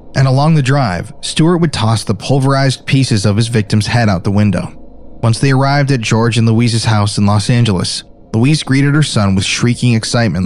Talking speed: 200 wpm